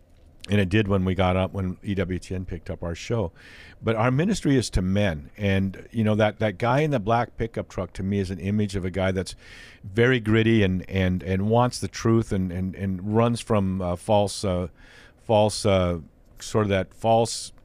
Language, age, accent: English, 50-69, American